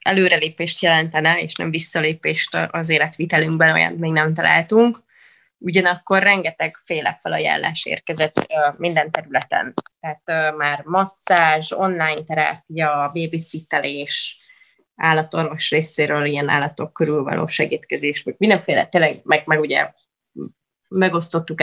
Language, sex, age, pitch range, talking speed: Hungarian, female, 20-39, 160-190 Hz, 105 wpm